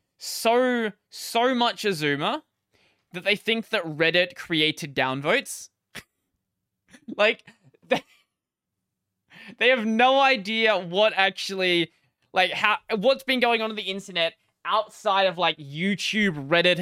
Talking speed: 120 wpm